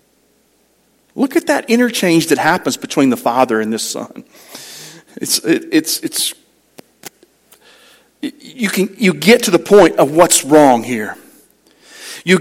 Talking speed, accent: 135 wpm, American